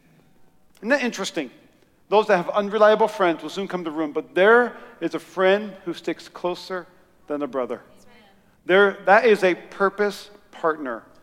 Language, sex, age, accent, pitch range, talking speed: English, male, 50-69, American, 155-195 Hz, 160 wpm